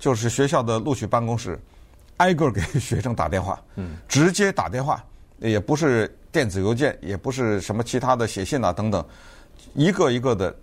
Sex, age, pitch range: male, 50-69, 100-165 Hz